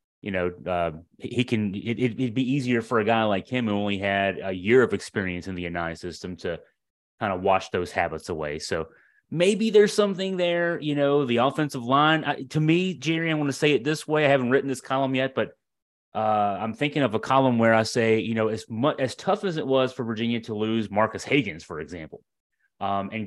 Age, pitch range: 30-49, 110-150 Hz